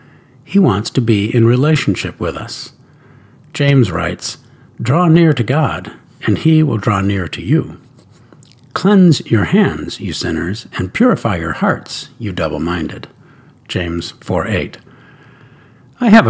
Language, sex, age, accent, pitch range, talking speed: English, male, 60-79, American, 115-145 Hz, 135 wpm